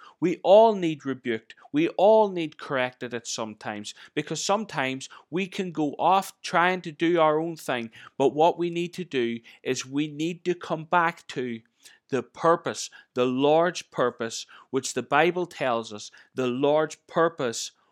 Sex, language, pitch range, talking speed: male, English, 130-175 Hz, 160 wpm